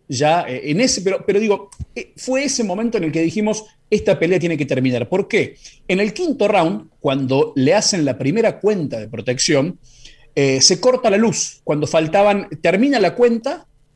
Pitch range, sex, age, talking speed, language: 145-215 Hz, male, 40-59, 180 wpm, Spanish